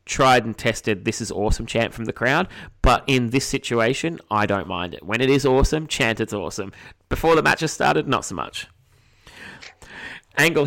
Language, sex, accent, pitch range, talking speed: English, male, Australian, 100-120 Hz, 190 wpm